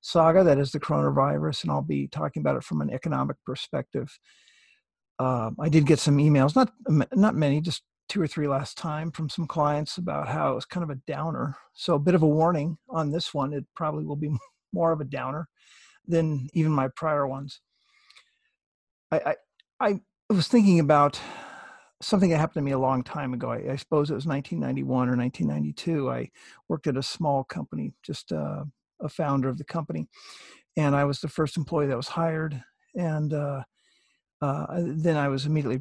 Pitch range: 135-165 Hz